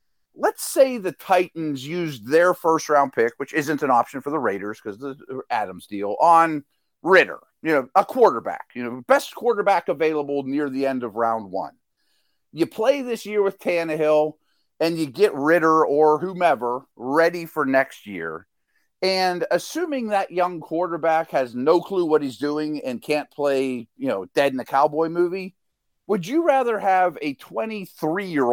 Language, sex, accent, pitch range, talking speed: English, male, American, 140-195 Hz, 170 wpm